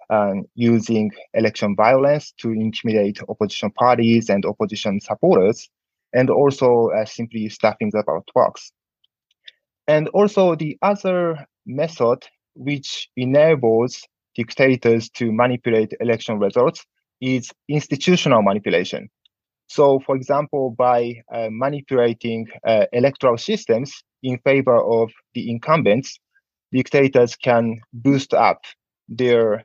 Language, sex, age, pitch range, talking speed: English, male, 20-39, 115-140 Hz, 105 wpm